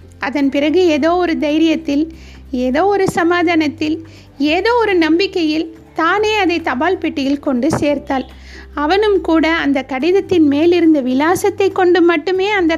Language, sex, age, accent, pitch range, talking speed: Tamil, female, 50-69, native, 300-370 Hz, 120 wpm